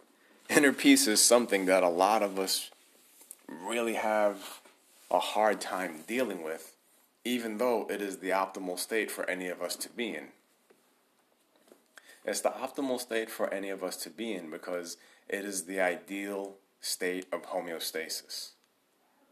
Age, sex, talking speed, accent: 30-49, male, 150 wpm, American